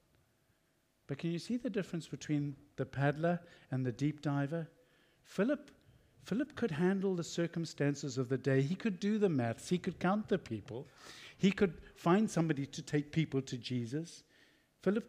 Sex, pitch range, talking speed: male, 125-160 Hz, 165 wpm